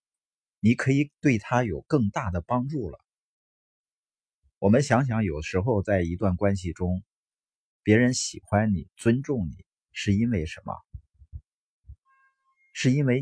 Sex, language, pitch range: male, Chinese, 85-125 Hz